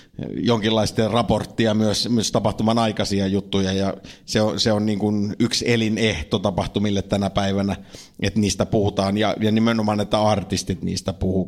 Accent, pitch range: native, 100-115 Hz